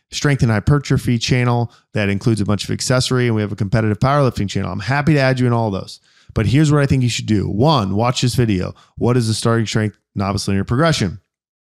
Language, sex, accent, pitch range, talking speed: English, male, American, 105-130 Hz, 235 wpm